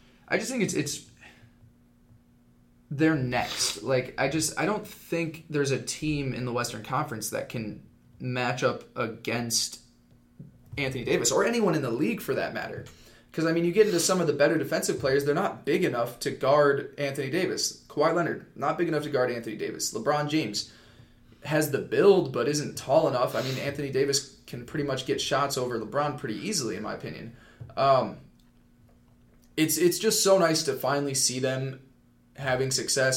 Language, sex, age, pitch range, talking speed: English, male, 20-39, 120-145 Hz, 185 wpm